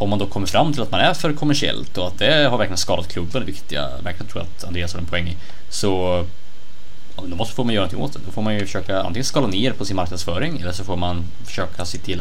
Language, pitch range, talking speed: Swedish, 90-105 Hz, 255 wpm